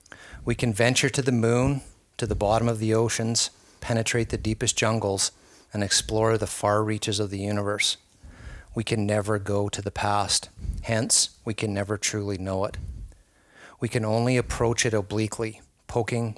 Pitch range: 100-115 Hz